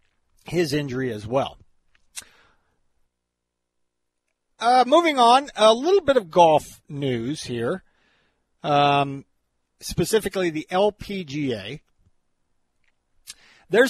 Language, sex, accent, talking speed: English, male, American, 80 wpm